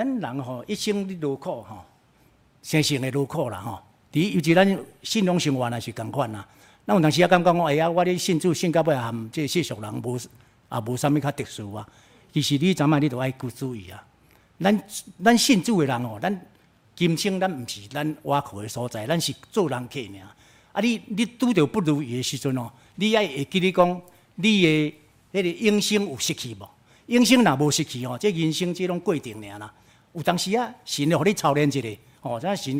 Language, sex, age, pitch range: Chinese, male, 60-79, 125-180 Hz